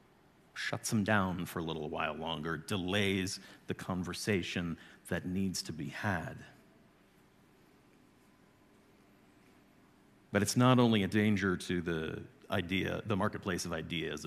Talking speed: 120 wpm